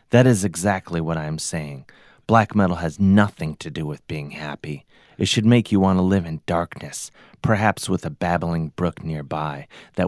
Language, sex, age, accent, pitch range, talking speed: English, male, 30-49, American, 85-110 Hz, 190 wpm